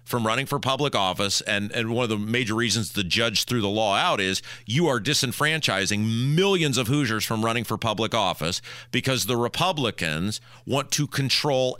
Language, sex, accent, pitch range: English, male, American, 115-155 Hz